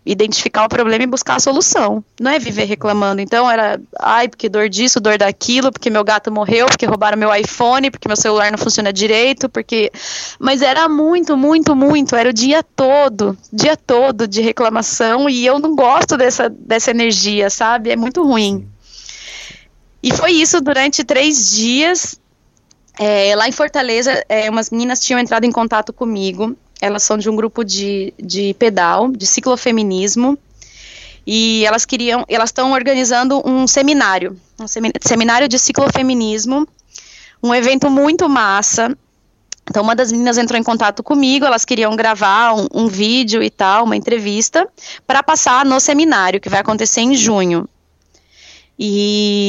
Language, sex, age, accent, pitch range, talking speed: Portuguese, female, 20-39, Brazilian, 210-265 Hz, 155 wpm